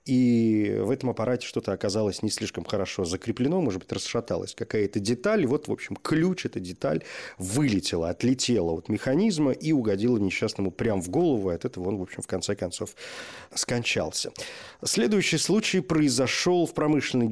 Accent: native